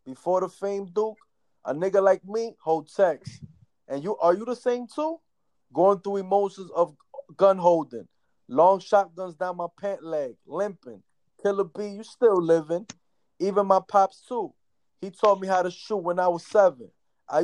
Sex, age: male, 20-39